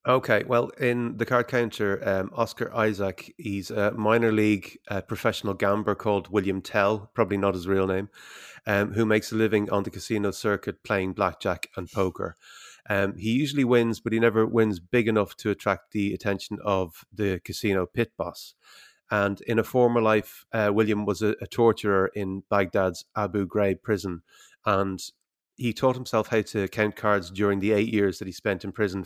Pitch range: 95-115 Hz